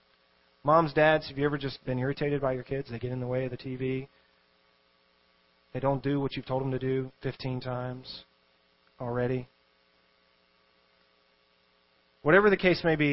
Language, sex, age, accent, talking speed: English, male, 30-49, American, 165 wpm